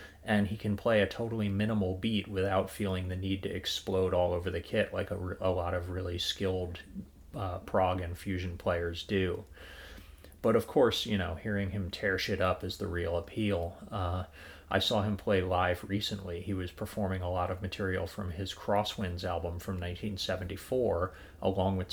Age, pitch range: 30-49, 90-100 Hz